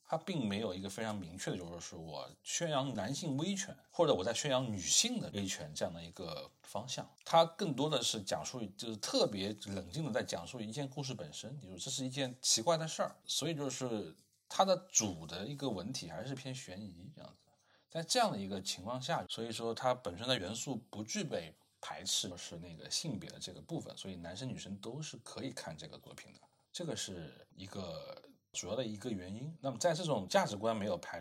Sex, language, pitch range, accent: male, Chinese, 95-140 Hz, native